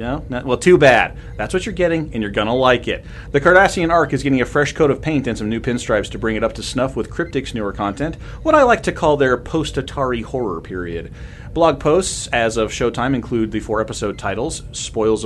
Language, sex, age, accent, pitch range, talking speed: English, male, 30-49, American, 110-145 Hz, 220 wpm